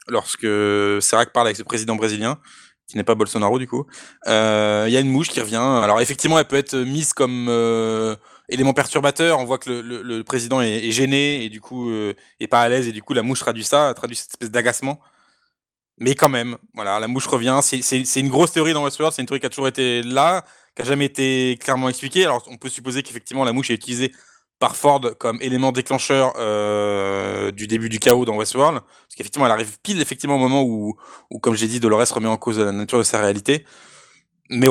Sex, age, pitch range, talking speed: male, 20-39, 115-140 Hz, 230 wpm